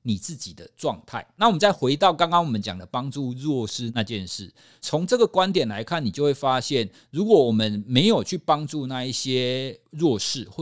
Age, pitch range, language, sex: 50-69, 105-160 Hz, Chinese, male